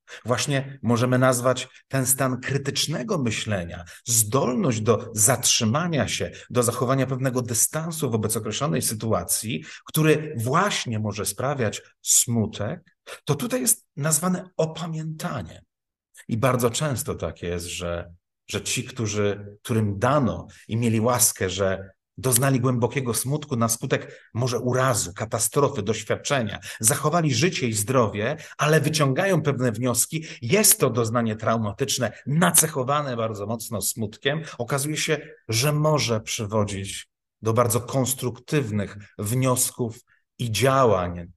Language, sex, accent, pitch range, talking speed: Polish, male, native, 105-135 Hz, 115 wpm